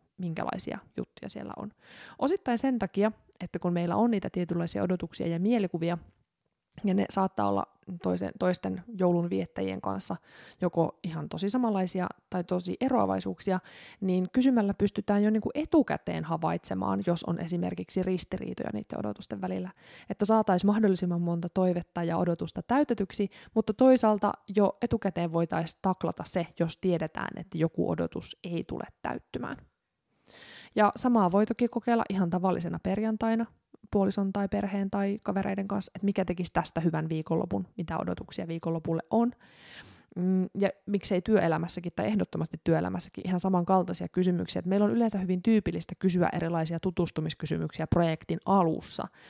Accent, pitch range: native, 165-200 Hz